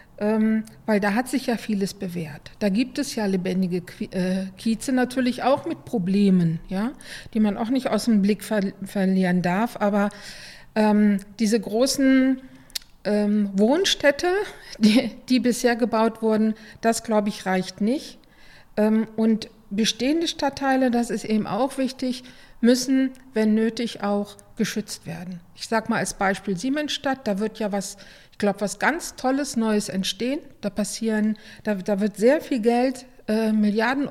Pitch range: 205-250 Hz